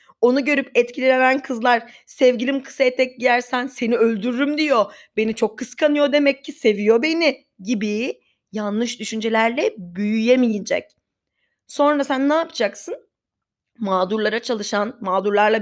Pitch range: 215-260 Hz